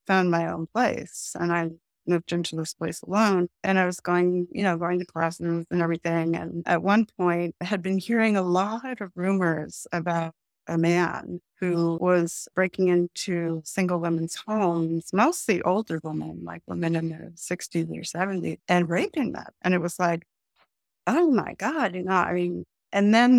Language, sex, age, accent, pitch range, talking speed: English, female, 30-49, American, 170-195 Hz, 180 wpm